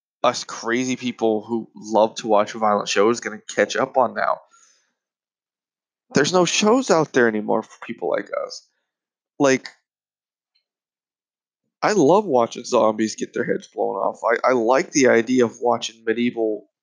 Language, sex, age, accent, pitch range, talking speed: English, male, 20-39, American, 110-135 Hz, 160 wpm